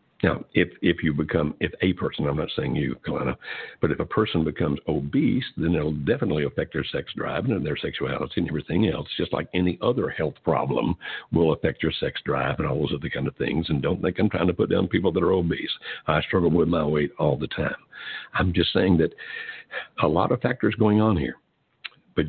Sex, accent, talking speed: male, American, 220 wpm